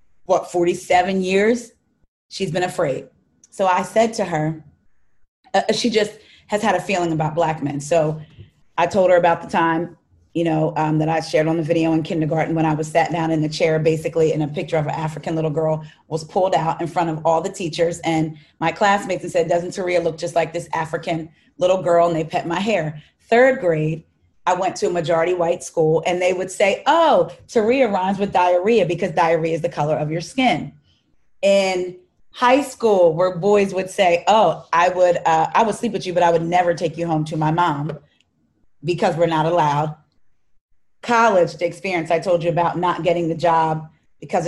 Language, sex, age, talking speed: English, female, 30-49, 205 wpm